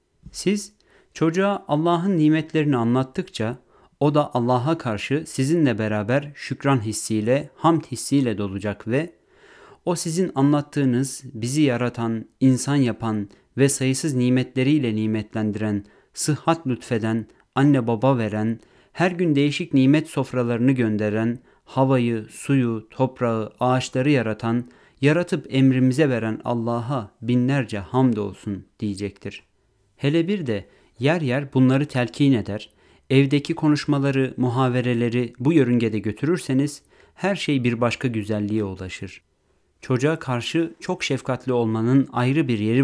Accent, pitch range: native, 110-145 Hz